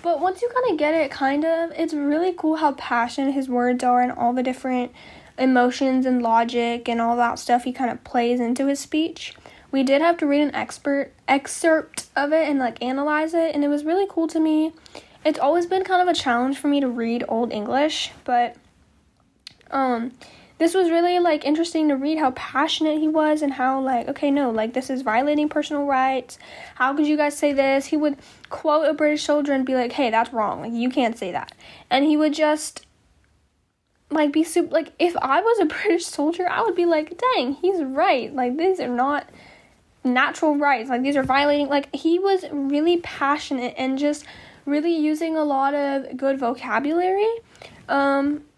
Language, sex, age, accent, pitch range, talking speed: English, female, 10-29, American, 260-320 Hz, 200 wpm